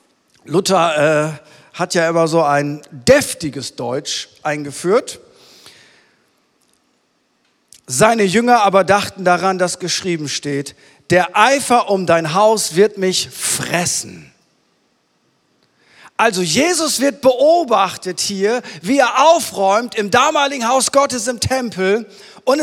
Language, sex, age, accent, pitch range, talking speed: German, male, 40-59, German, 215-285 Hz, 110 wpm